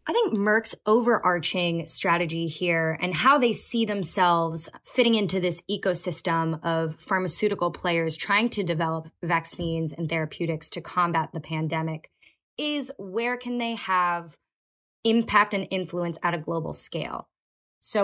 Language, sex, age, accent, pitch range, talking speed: English, female, 20-39, American, 175-220 Hz, 135 wpm